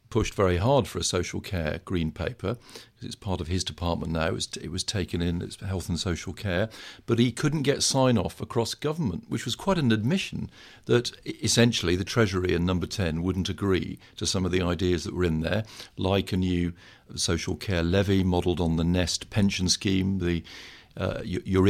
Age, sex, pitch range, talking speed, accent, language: 50-69, male, 95-115 Hz, 195 wpm, British, English